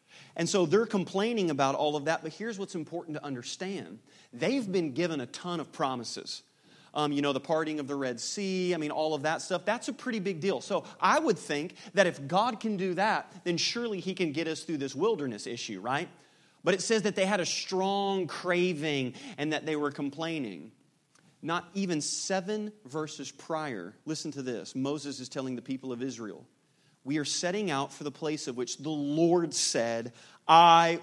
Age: 40-59